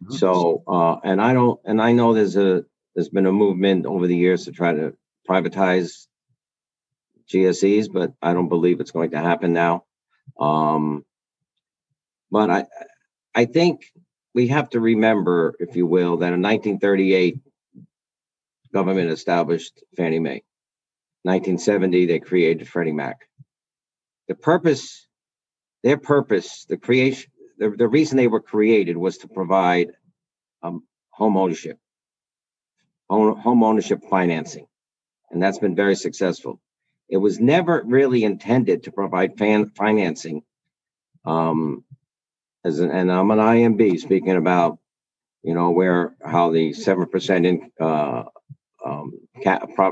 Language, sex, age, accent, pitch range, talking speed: English, male, 50-69, American, 85-110 Hz, 130 wpm